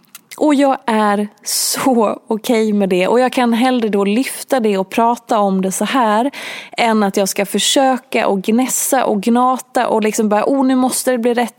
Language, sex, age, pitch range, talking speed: Swedish, female, 20-39, 195-255 Hz, 200 wpm